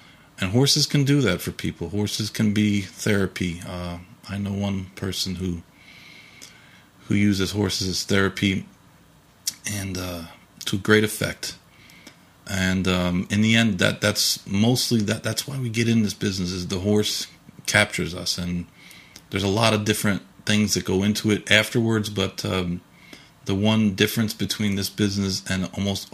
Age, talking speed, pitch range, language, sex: 40-59, 160 wpm, 90-105 Hz, English, male